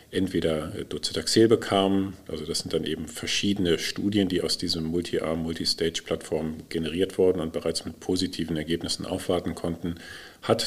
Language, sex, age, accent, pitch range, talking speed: German, male, 50-69, German, 85-100 Hz, 135 wpm